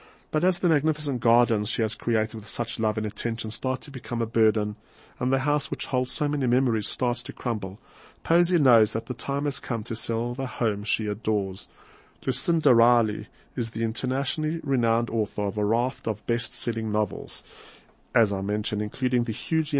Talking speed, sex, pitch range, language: 185 wpm, male, 110-135 Hz, English